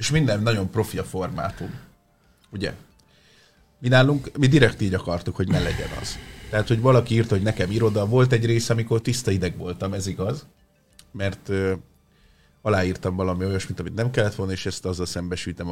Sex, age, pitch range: male, 30-49, 95-125 Hz